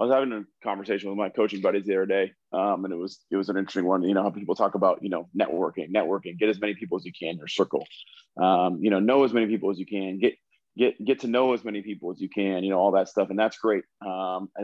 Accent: American